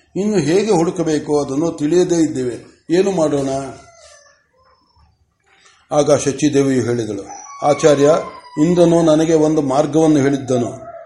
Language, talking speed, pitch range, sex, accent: Kannada, 85 wpm, 145-175 Hz, male, native